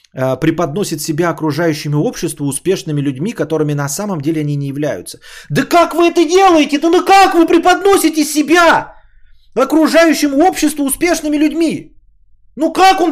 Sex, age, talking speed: male, 30-49, 140 wpm